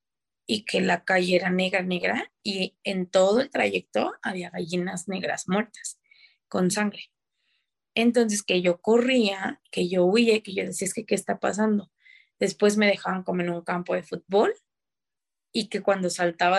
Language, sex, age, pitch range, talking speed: Spanish, female, 20-39, 185-245 Hz, 165 wpm